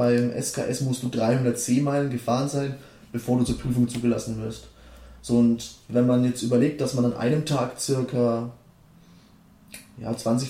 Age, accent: 20-39, German